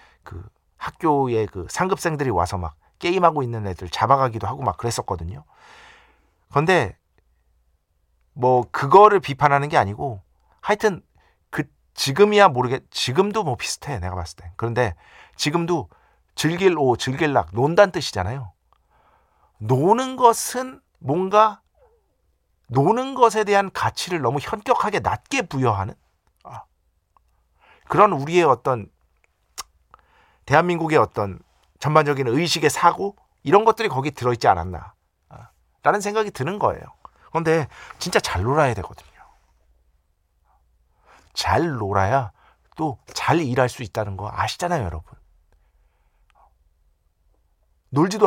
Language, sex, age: Korean, male, 50-69